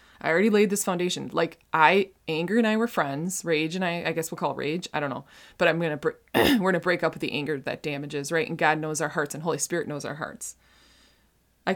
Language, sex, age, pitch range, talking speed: English, female, 20-39, 145-185 Hz, 265 wpm